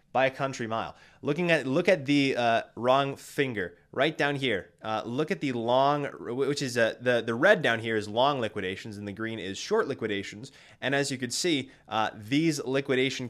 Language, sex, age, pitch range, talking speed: English, male, 20-39, 105-145 Hz, 205 wpm